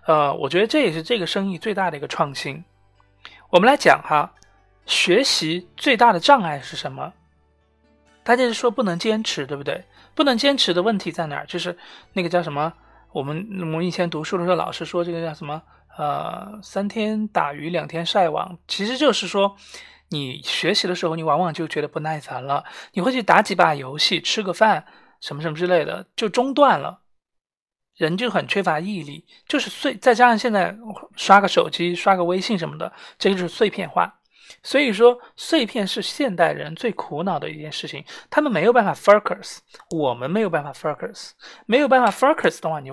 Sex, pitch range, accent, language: male, 160-225 Hz, native, Chinese